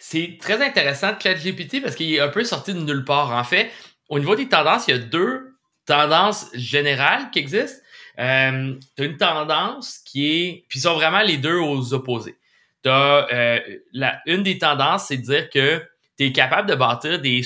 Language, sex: French, male